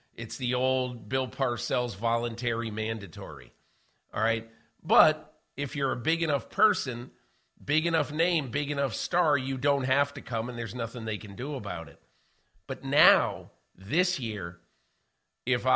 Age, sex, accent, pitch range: 50-69, male, American, 110-145 Hz